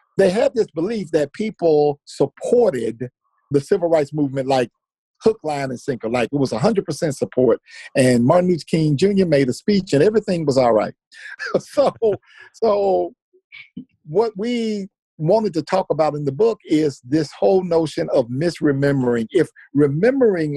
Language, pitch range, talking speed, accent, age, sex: English, 135-195 Hz, 160 wpm, American, 50-69, male